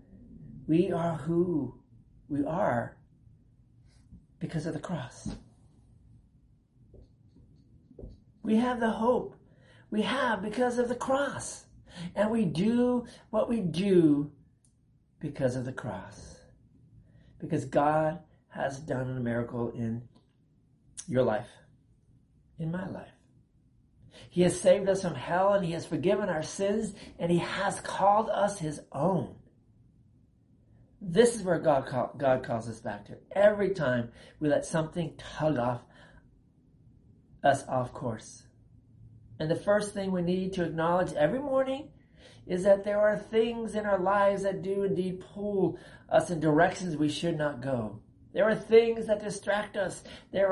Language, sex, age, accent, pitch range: Japanese, male, 50-69, American, 130-200 Hz